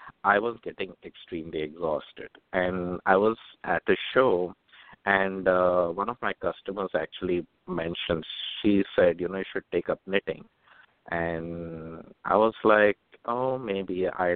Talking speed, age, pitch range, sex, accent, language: 145 wpm, 50-69, 90-110 Hz, male, Indian, English